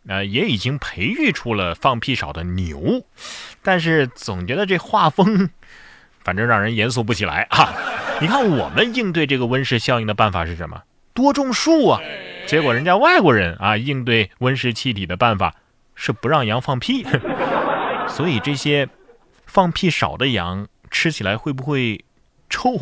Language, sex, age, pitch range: Chinese, male, 30-49, 105-175 Hz